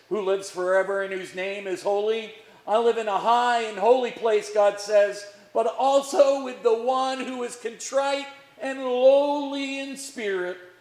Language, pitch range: English, 155-240 Hz